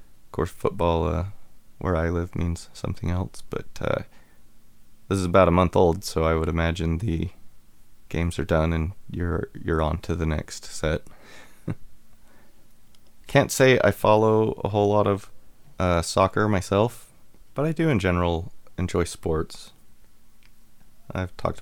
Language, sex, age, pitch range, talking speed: English, male, 30-49, 90-110 Hz, 145 wpm